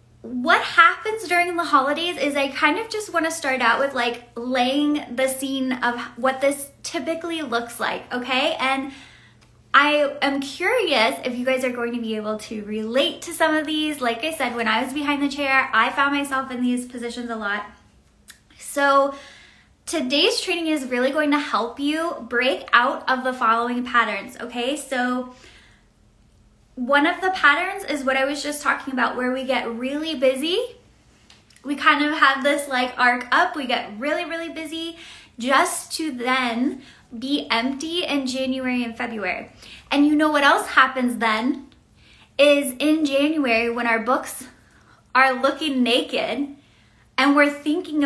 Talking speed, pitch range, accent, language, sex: 170 wpm, 245-295 Hz, American, English, female